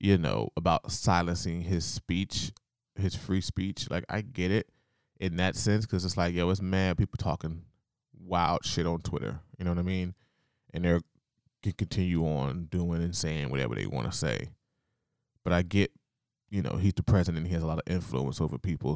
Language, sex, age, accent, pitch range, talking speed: English, male, 20-39, American, 85-105 Hz, 195 wpm